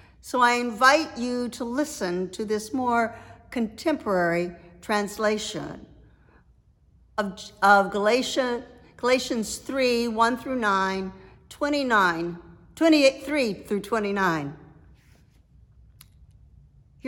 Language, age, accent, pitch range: English, 60-79, American, 170-280 Hz